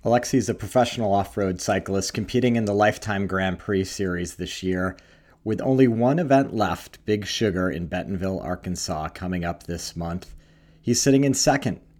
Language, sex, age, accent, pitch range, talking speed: English, male, 40-59, American, 90-115 Hz, 165 wpm